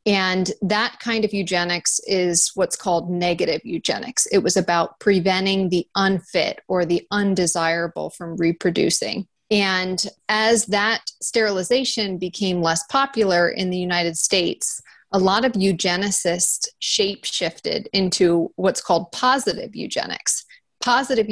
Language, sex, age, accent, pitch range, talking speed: English, female, 30-49, American, 175-200 Hz, 120 wpm